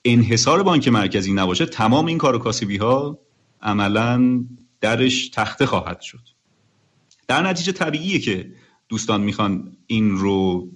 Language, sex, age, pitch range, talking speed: Persian, male, 40-59, 105-145 Hz, 125 wpm